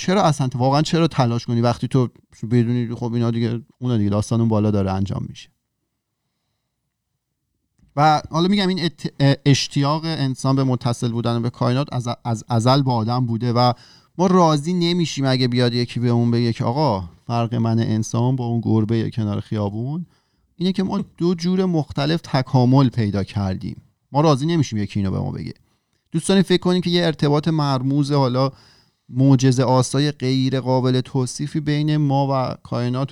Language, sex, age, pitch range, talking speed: Persian, male, 40-59, 115-145 Hz, 165 wpm